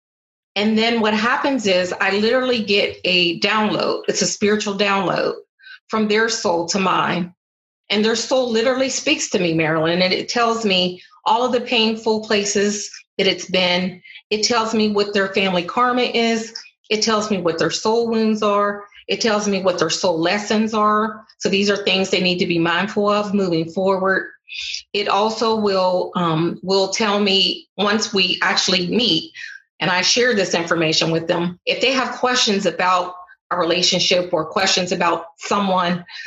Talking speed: 170 wpm